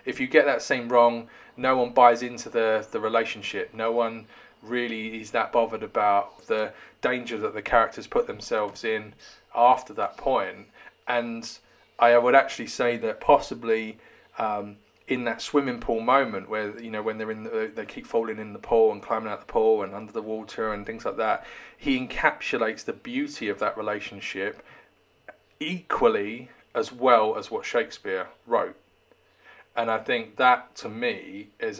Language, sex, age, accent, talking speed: English, male, 30-49, British, 170 wpm